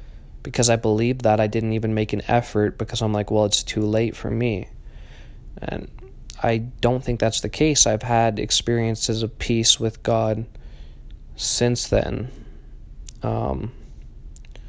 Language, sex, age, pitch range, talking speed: English, male, 20-39, 110-115 Hz, 145 wpm